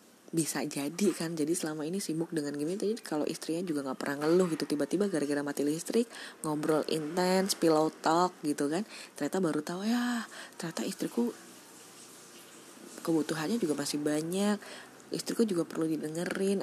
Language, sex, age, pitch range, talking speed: Indonesian, female, 20-39, 140-175 Hz, 150 wpm